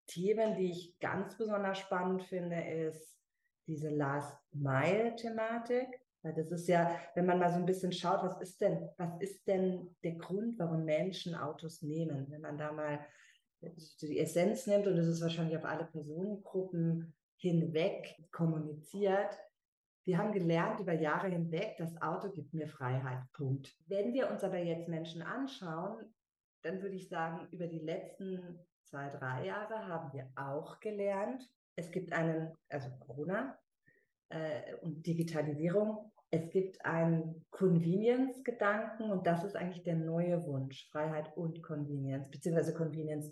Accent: German